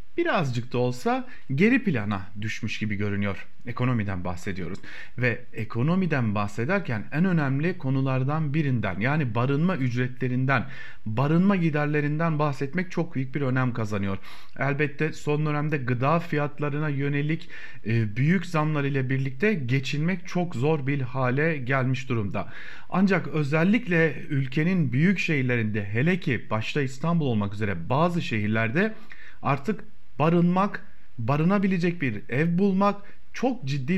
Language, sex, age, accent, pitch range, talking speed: German, male, 40-59, Turkish, 120-170 Hz, 115 wpm